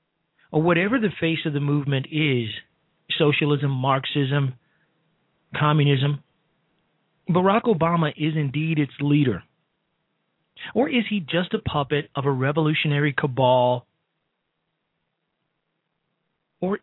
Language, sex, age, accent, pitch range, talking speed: English, male, 40-59, American, 140-170 Hz, 95 wpm